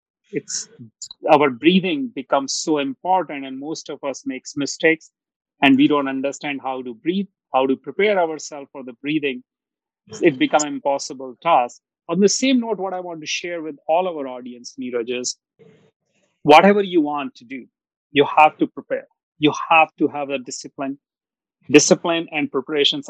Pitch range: 140-180 Hz